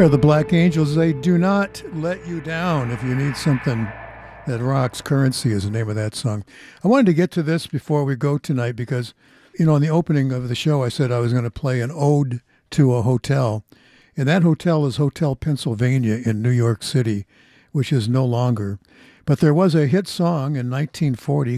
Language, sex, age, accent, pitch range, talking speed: English, male, 60-79, American, 120-155 Hz, 210 wpm